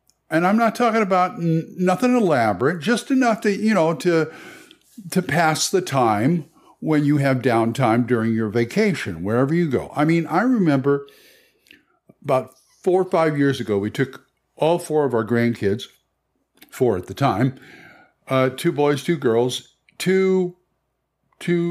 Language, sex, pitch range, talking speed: English, male, 120-170 Hz, 150 wpm